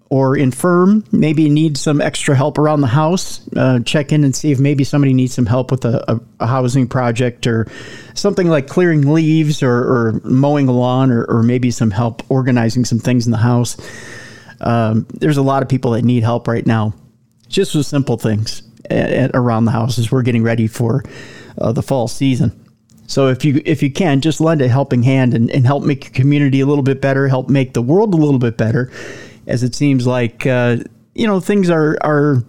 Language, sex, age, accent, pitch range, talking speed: English, male, 40-59, American, 120-145 Hz, 205 wpm